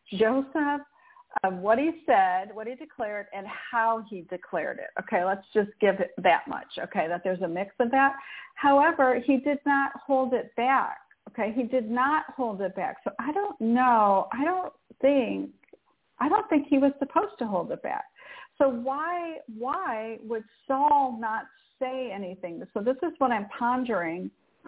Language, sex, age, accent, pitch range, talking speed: English, female, 50-69, American, 205-275 Hz, 175 wpm